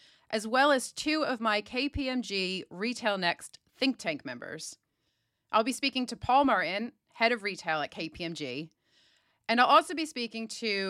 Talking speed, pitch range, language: 160 wpm, 180-255 Hz, English